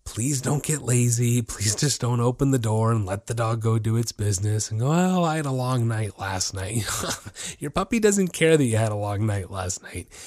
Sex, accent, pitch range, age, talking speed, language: male, American, 100-135 Hz, 30-49, 240 wpm, English